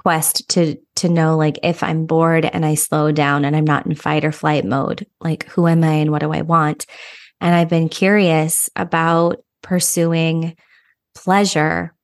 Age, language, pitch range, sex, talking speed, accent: 20-39, English, 160-185 Hz, female, 180 wpm, American